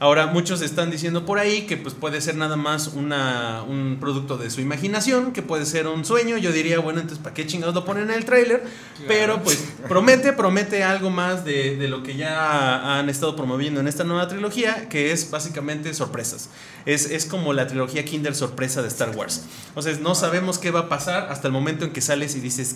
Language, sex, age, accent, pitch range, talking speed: Spanish, male, 30-49, Mexican, 140-180 Hz, 220 wpm